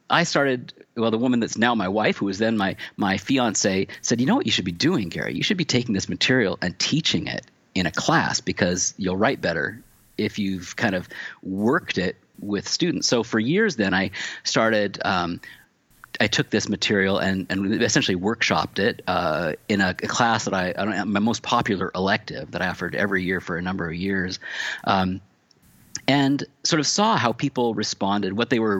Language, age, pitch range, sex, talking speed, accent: English, 40-59, 95-120 Hz, male, 210 wpm, American